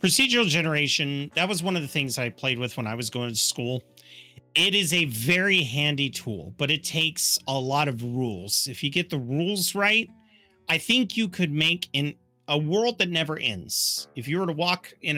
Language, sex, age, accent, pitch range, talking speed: English, male, 40-59, American, 125-180 Hz, 210 wpm